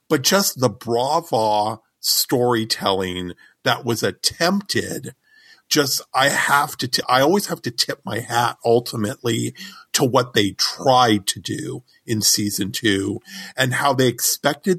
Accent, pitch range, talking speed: American, 110-140 Hz, 135 wpm